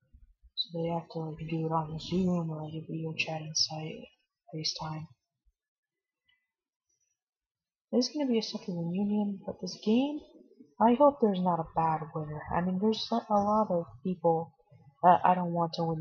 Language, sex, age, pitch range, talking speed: English, female, 30-49, 160-215 Hz, 175 wpm